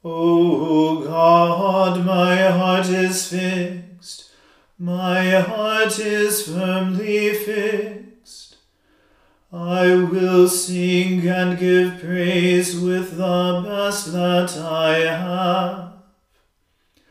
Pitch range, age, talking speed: 180-185 Hz, 40-59, 80 wpm